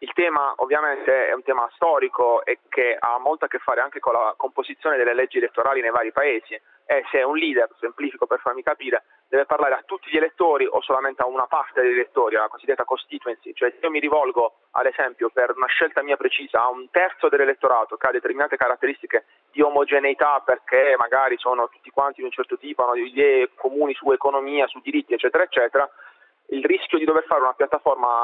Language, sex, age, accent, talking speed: Italian, male, 30-49, native, 205 wpm